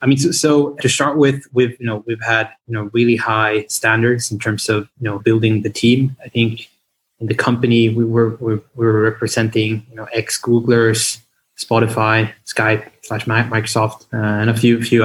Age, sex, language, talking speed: 20-39, male, English, 190 wpm